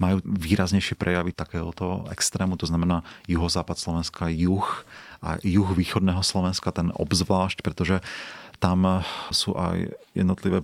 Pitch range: 85-95 Hz